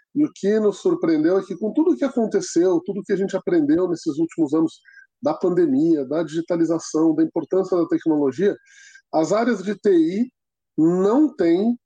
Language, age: Portuguese, 20-39